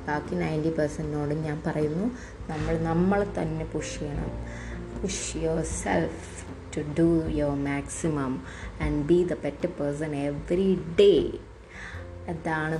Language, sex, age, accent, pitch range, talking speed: Malayalam, female, 20-39, native, 160-195 Hz, 115 wpm